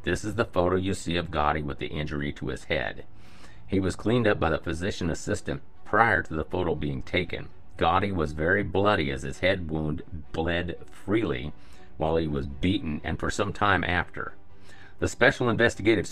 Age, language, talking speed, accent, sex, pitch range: 50-69, English, 185 wpm, American, male, 80-100 Hz